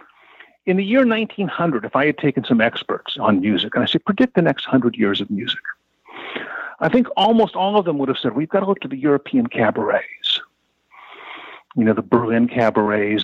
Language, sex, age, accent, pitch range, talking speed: English, male, 50-69, American, 125-195 Hz, 200 wpm